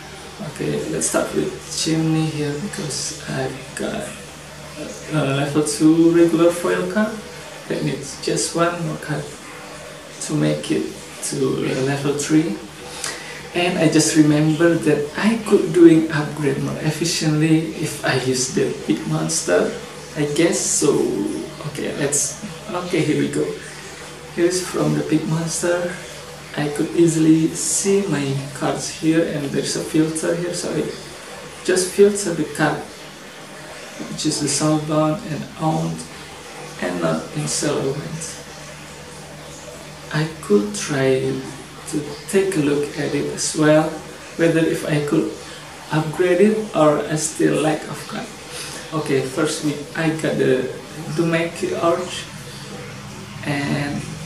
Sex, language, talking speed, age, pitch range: male, English, 130 wpm, 20-39, 150-170 Hz